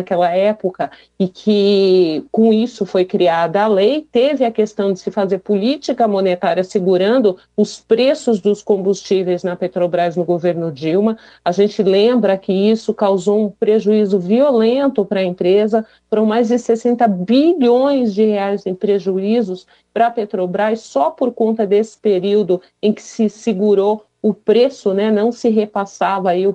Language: Portuguese